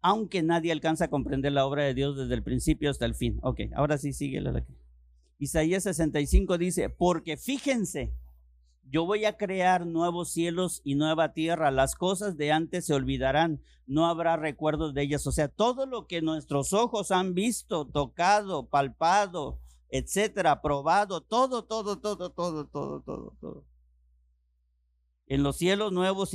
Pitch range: 110-175 Hz